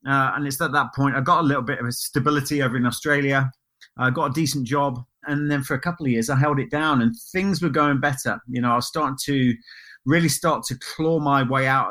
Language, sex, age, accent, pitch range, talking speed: English, male, 30-49, British, 125-145 Hz, 250 wpm